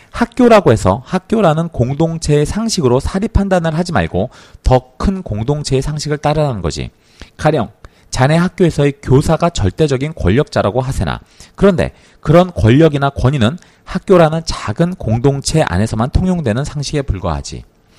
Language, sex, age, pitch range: Korean, male, 40-59, 105-160 Hz